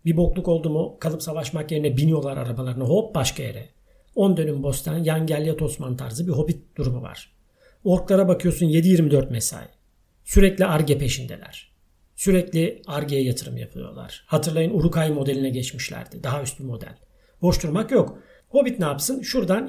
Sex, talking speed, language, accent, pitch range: male, 140 wpm, Turkish, native, 130-175 Hz